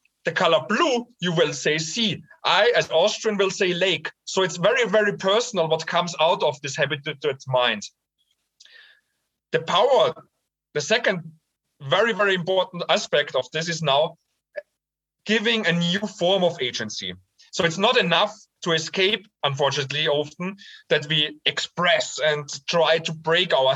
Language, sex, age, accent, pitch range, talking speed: English, male, 40-59, German, 150-200 Hz, 150 wpm